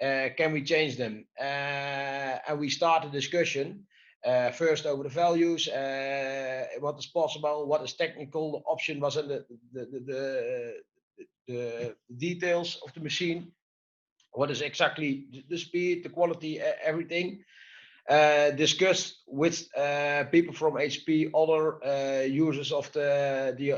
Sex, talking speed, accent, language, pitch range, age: male, 145 wpm, Dutch, English, 135-165 Hz, 30-49